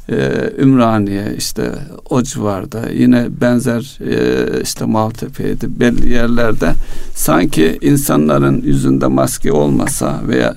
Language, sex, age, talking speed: Turkish, male, 60-79, 95 wpm